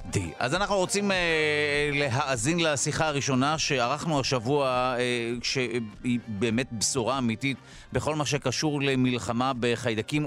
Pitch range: 120-150 Hz